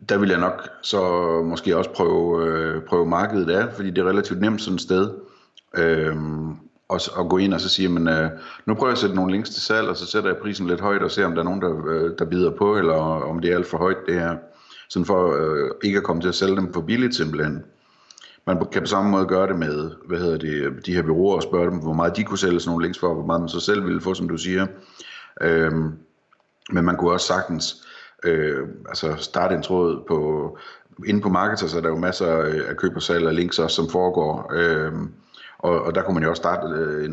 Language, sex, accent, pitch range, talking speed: Danish, male, native, 80-95 Hz, 240 wpm